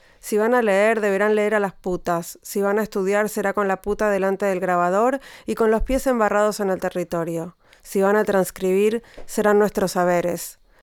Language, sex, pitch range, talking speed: Spanish, female, 190-215 Hz, 195 wpm